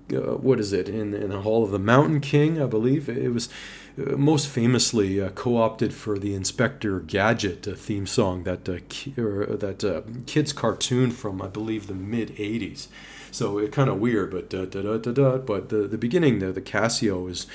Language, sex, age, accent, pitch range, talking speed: English, male, 30-49, American, 100-115 Hz, 210 wpm